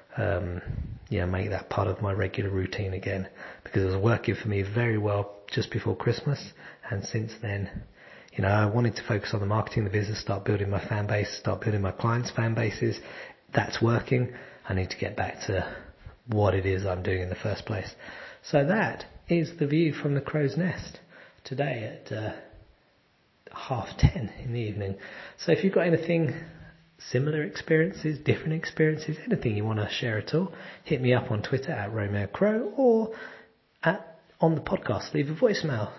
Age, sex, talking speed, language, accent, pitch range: 40-59, male, 185 wpm, English, British, 100-150 Hz